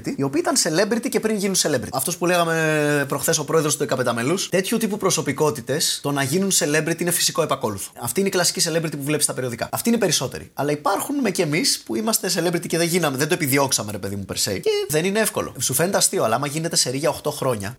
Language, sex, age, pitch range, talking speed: Greek, male, 20-39, 130-185 Hz, 245 wpm